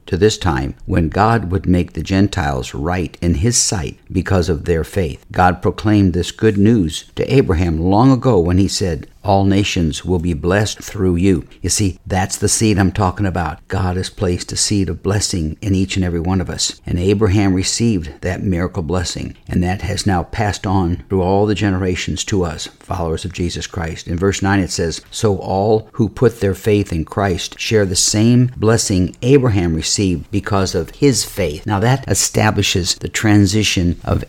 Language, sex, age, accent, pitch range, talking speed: English, male, 60-79, American, 90-105 Hz, 190 wpm